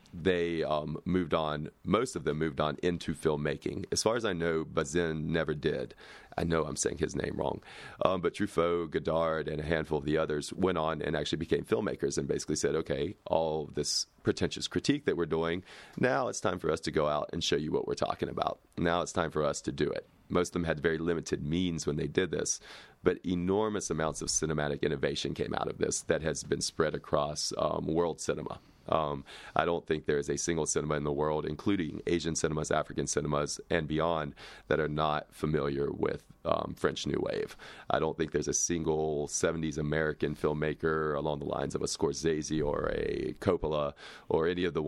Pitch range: 75-85 Hz